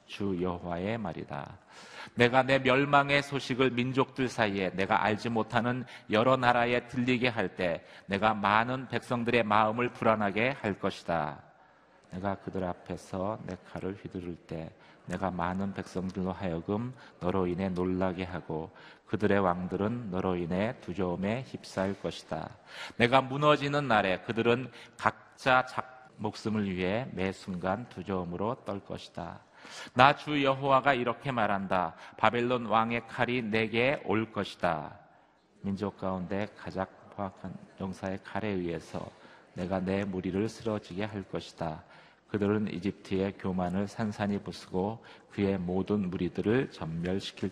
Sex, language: male, Korean